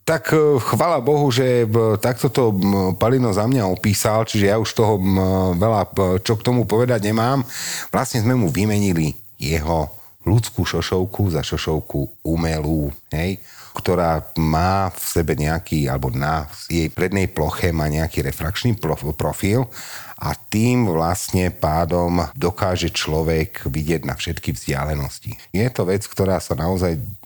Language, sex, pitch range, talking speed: Slovak, male, 80-100 Hz, 135 wpm